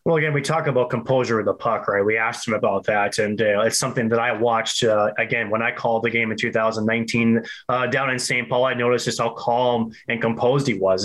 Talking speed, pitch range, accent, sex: 245 wpm, 115-130 Hz, American, male